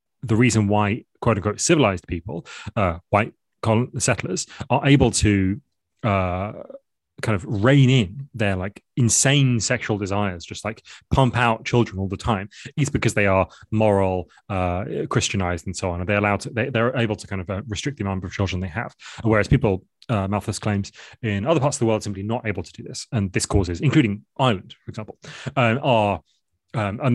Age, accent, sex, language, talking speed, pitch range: 30-49, British, male, English, 195 wpm, 100-125 Hz